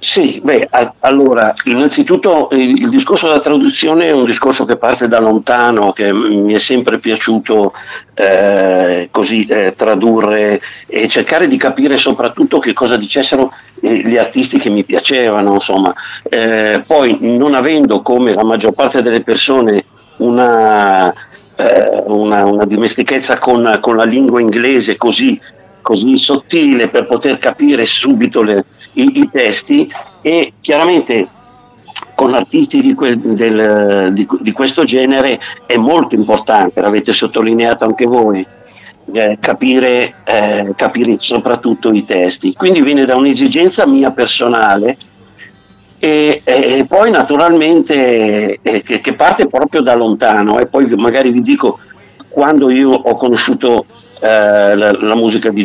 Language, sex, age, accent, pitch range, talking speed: Italian, male, 50-69, native, 105-155 Hz, 135 wpm